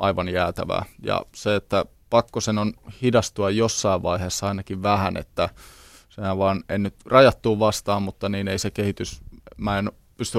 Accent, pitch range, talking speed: native, 95-110 Hz, 160 wpm